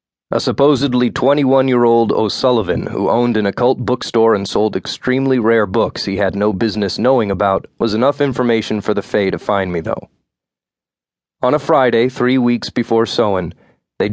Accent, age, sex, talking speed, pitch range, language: American, 30-49, male, 160 wpm, 105-135 Hz, English